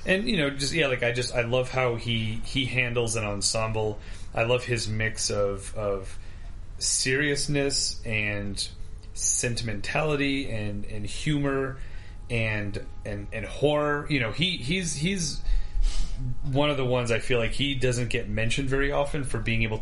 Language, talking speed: English, 160 wpm